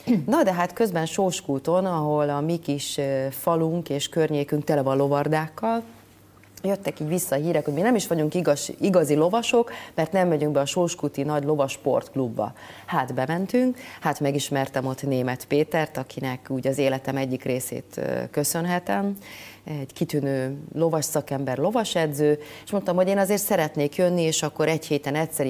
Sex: female